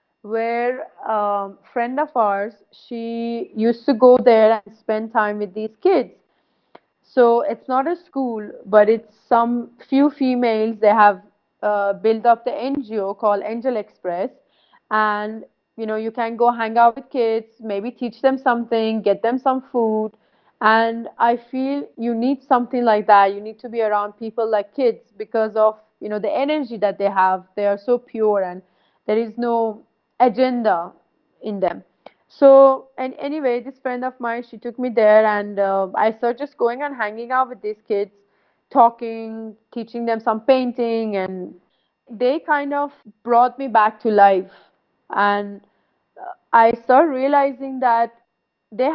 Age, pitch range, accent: 30-49, 215-250 Hz, Indian